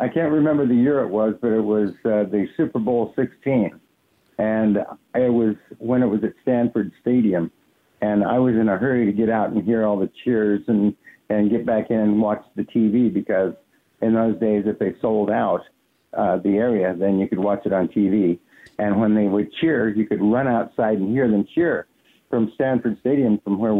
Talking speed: 210 wpm